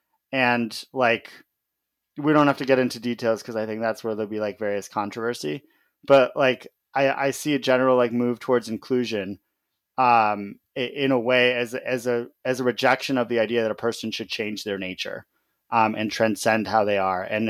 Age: 30-49